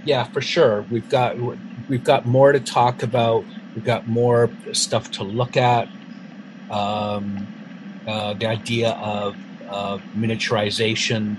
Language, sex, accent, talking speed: English, male, American, 130 wpm